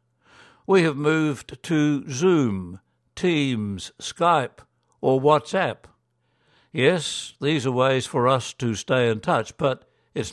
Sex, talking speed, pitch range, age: male, 120 wpm, 115-155 Hz, 60-79